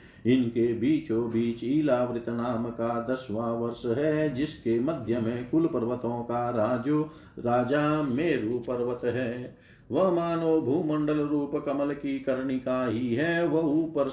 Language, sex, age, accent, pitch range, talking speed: Hindi, male, 50-69, native, 120-140 Hz, 130 wpm